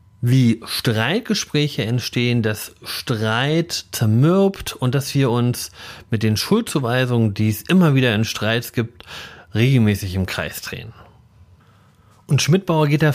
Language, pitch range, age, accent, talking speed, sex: German, 110-155 Hz, 30-49, German, 130 wpm, male